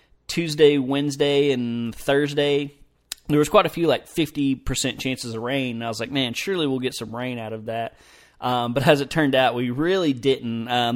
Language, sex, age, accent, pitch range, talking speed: English, male, 30-49, American, 120-140 Hz, 205 wpm